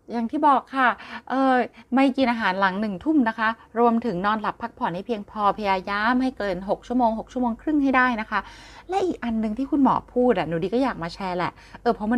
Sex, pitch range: female, 190-250 Hz